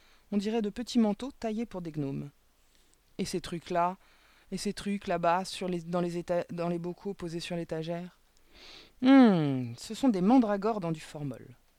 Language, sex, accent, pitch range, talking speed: French, female, French, 145-200 Hz, 155 wpm